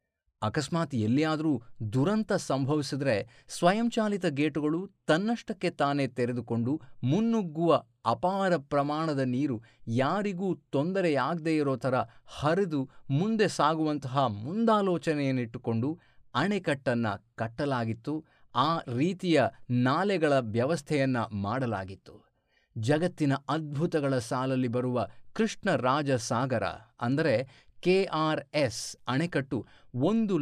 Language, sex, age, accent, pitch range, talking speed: Kannada, male, 30-49, native, 120-165 Hz, 75 wpm